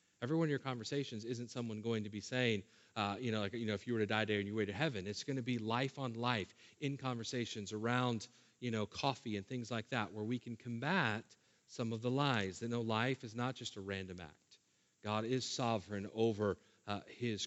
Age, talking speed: 40-59, 230 wpm